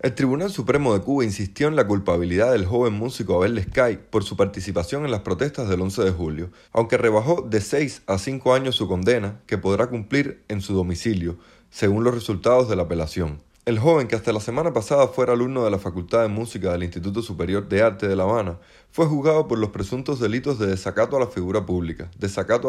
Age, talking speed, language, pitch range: 30-49, 210 wpm, Spanish, 95-130 Hz